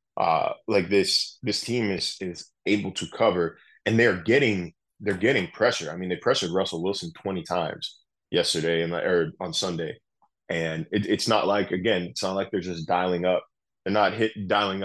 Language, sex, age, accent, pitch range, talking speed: English, male, 20-39, American, 85-95 Hz, 180 wpm